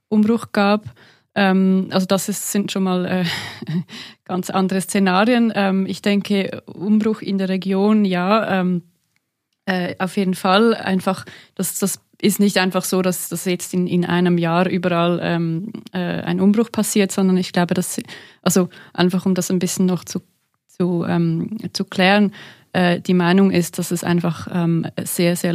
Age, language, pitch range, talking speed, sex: 20-39, German, 180-200 Hz, 165 wpm, female